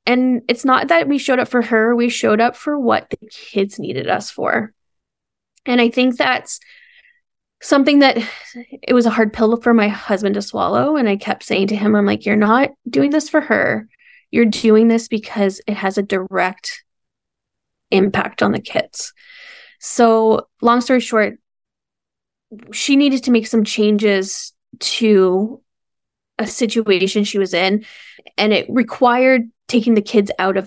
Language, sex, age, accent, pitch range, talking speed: English, female, 10-29, American, 215-255 Hz, 165 wpm